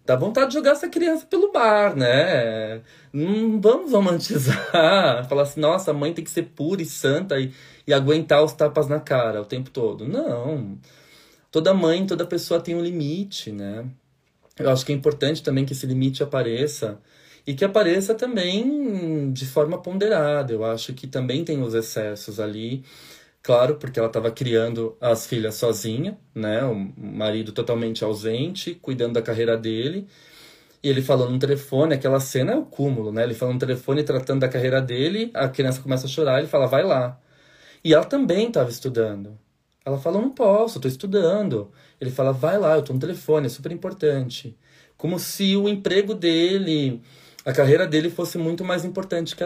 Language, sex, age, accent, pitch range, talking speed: Portuguese, male, 20-39, Brazilian, 125-170 Hz, 180 wpm